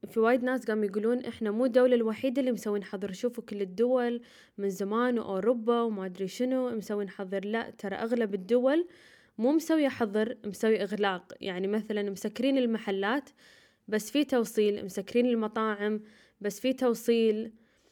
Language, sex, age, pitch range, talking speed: Arabic, female, 10-29, 205-240 Hz, 145 wpm